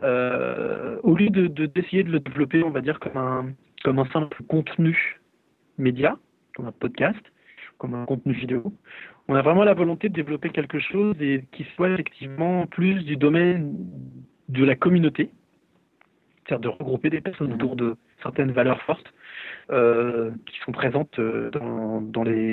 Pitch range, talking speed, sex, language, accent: 130-160 Hz, 165 wpm, male, French, French